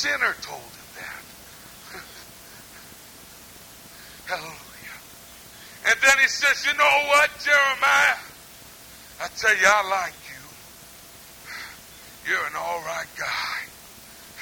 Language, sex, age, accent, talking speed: English, male, 60-79, American, 100 wpm